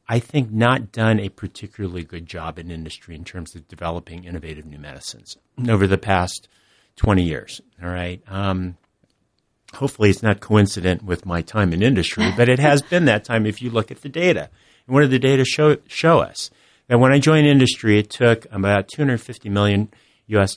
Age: 50-69